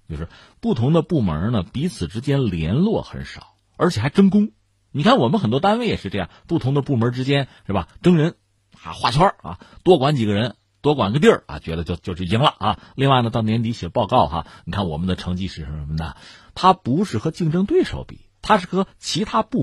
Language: Chinese